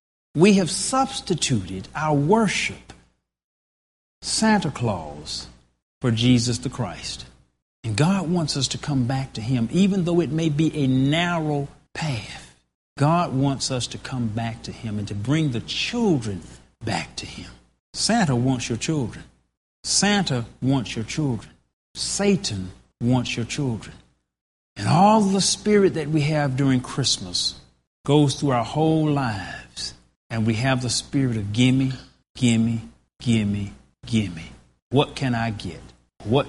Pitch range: 100-155 Hz